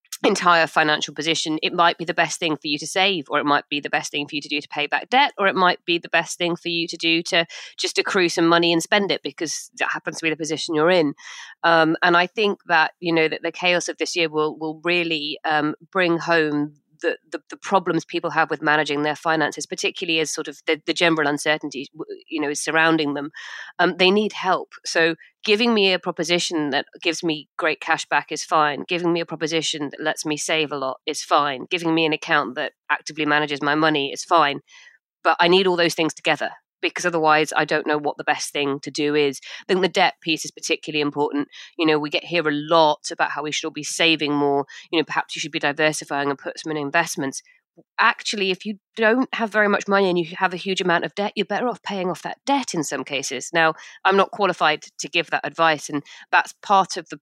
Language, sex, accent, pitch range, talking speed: English, female, British, 150-180 Hz, 240 wpm